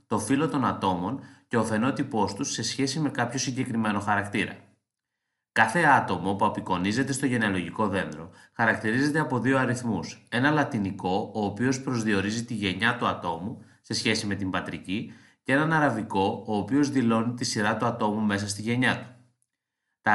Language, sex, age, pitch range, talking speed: Greek, male, 30-49, 105-135 Hz, 160 wpm